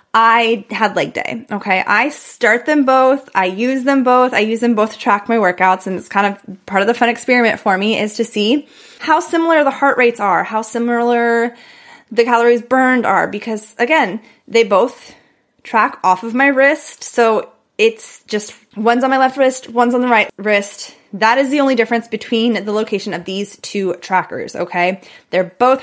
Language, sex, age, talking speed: English, female, 20-39, 195 wpm